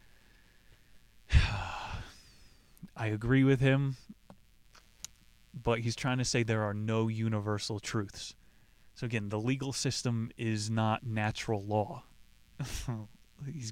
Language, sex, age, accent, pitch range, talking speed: English, male, 20-39, American, 105-130 Hz, 105 wpm